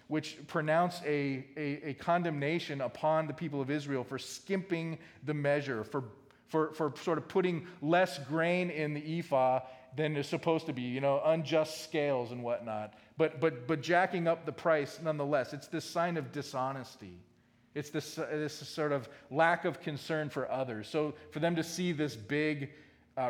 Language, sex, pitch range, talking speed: English, male, 125-155 Hz, 175 wpm